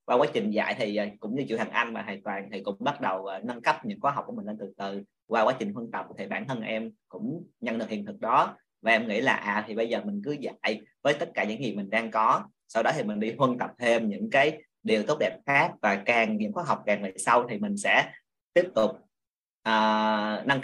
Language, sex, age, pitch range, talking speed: Vietnamese, male, 20-39, 105-150 Hz, 260 wpm